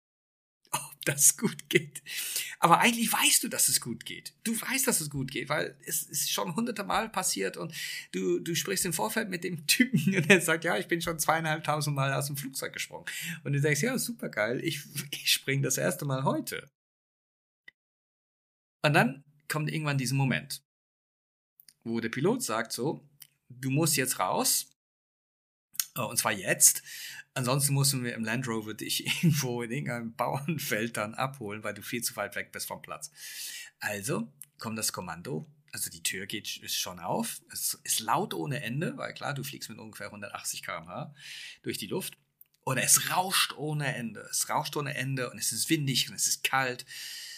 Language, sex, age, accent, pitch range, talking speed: German, male, 40-59, German, 125-175 Hz, 185 wpm